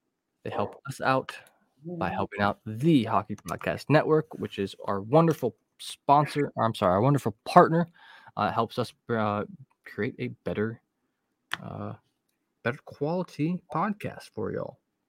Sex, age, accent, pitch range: male, 20-39, American, 105-145 Hz